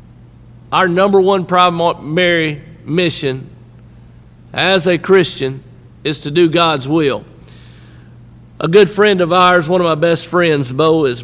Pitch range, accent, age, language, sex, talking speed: 130-175 Hz, American, 50-69, English, male, 135 wpm